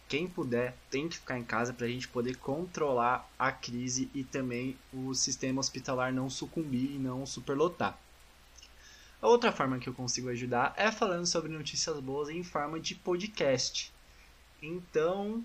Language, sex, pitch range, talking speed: Portuguese, male, 125-170 Hz, 160 wpm